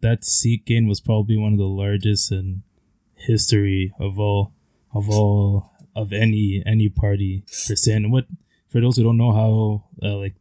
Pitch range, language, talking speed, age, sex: 100-110 Hz, English, 180 wpm, 20-39, male